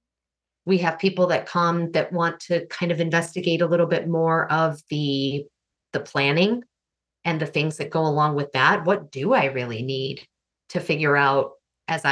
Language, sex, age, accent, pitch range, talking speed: English, female, 30-49, American, 140-175 Hz, 180 wpm